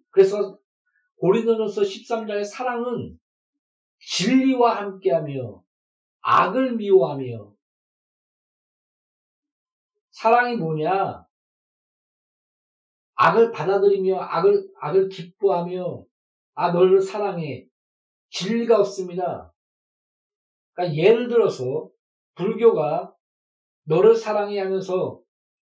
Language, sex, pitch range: Korean, male, 175-240 Hz